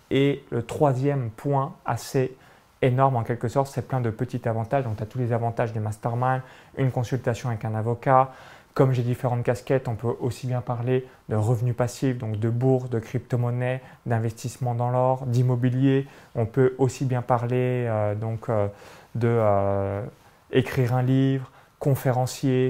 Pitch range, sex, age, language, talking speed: 120-140 Hz, male, 30-49, French, 160 wpm